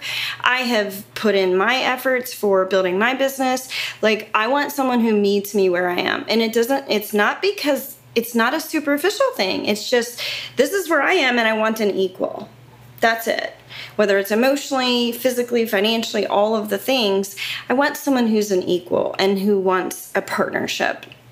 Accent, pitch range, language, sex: American, 195-245 Hz, English, female